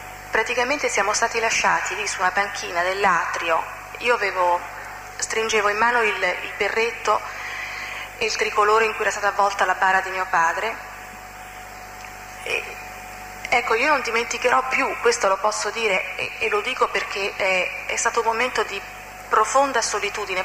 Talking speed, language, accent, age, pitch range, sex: 155 wpm, Italian, native, 30-49, 190-235 Hz, female